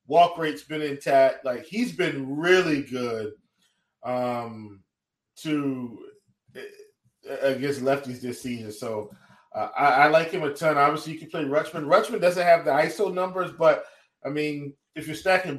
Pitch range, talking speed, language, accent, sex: 145-210 Hz, 160 wpm, English, American, male